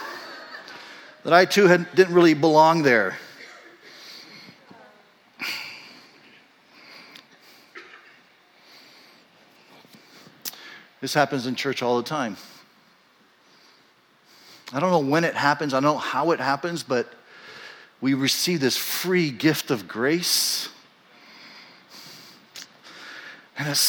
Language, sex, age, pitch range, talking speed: English, male, 40-59, 135-215 Hz, 90 wpm